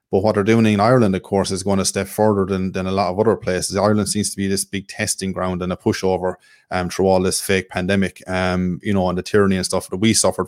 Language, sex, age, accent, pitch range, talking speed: English, male, 20-39, Irish, 95-105 Hz, 275 wpm